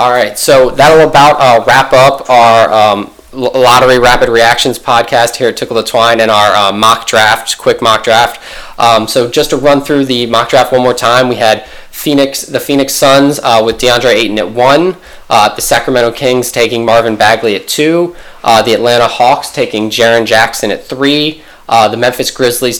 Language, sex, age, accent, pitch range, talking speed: English, male, 20-39, American, 115-130 Hz, 190 wpm